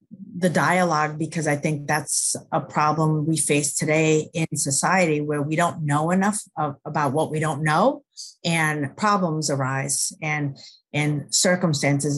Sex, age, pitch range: female, 40-59, 145-160 Hz